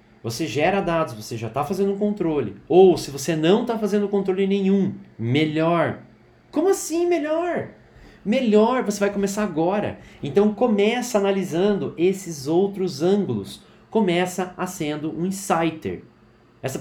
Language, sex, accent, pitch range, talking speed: Portuguese, male, Brazilian, 155-210 Hz, 135 wpm